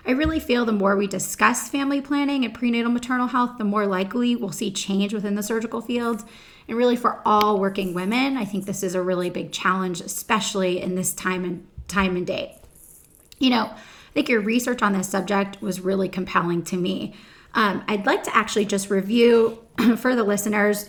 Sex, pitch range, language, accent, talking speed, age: female, 190-230 Hz, English, American, 200 wpm, 30-49